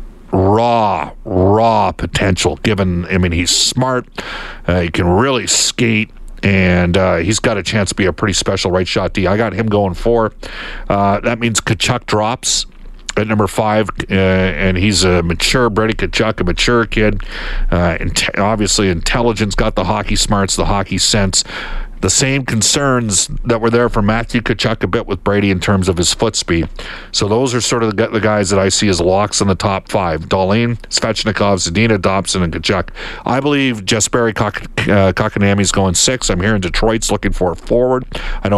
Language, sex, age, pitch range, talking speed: English, male, 50-69, 95-115 Hz, 180 wpm